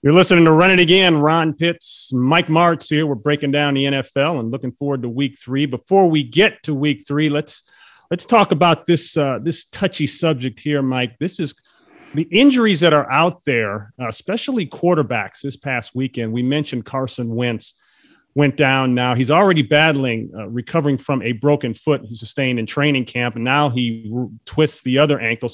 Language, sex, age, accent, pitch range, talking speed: English, male, 30-49, American, 120-155 Hz, 190 wpm